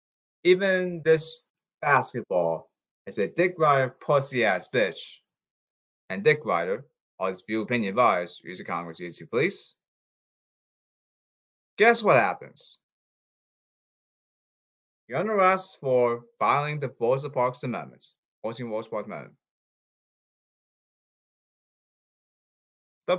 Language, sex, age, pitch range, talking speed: English, male, 30-49, 125-170 Hz, 100 wpm